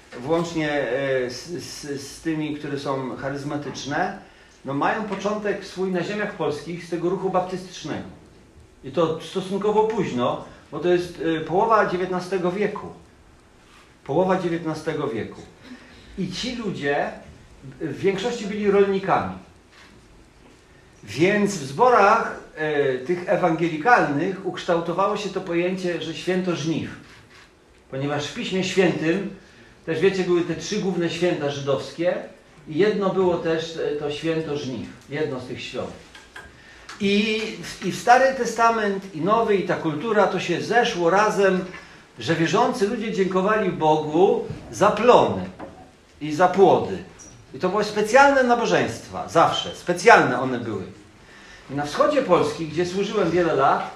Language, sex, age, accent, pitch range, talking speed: Polish, male, 50-69, native, 150-195 Hz, 125 wpm